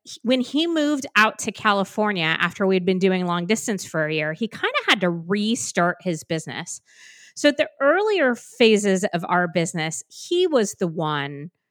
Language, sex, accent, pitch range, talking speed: English, female, American, 180-235 Hz, 175 wpm